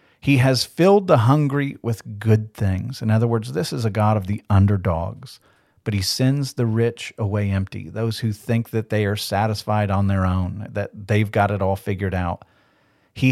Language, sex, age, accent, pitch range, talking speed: English, male, 40-59, American, 100-120 Hz, 195 wpm